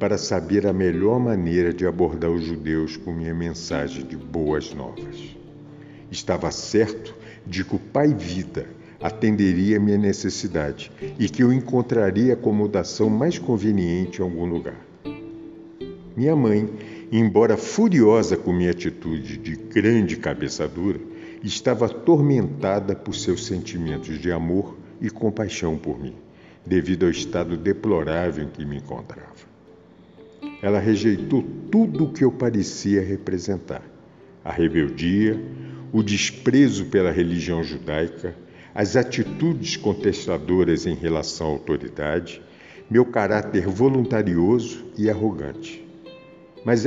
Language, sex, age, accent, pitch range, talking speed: Portuguese, male, 60-79, Brazilian, 85-120 Hz, 120 wpm